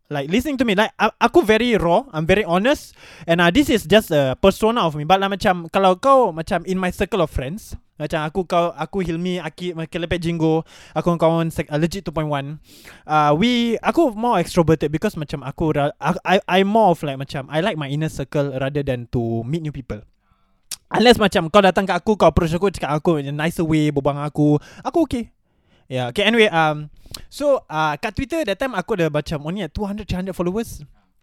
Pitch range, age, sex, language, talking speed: 145-195 Hz, 20-39, male, Malay, 215 wpm